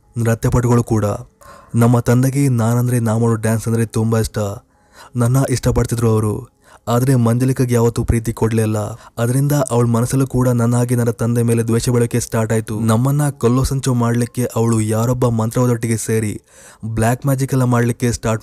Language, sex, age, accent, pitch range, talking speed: Kannada, male, 20-39, native, 115-125 Hz, 140 wpm